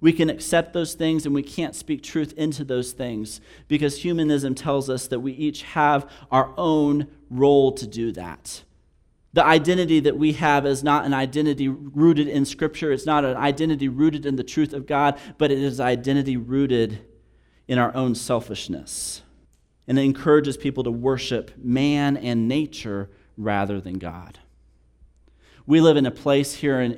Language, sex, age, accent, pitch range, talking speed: English, male, 40-59, American, 120-150 Hz, 170 wpm